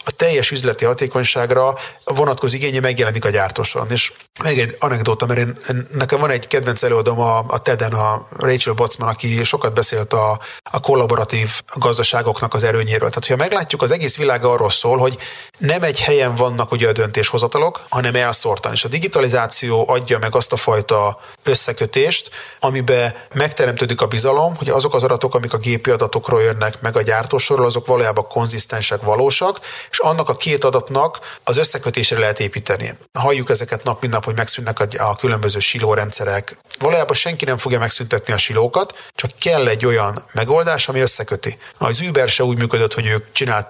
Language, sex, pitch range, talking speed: Hungarian, male, 115-140 Hz, 170 wpm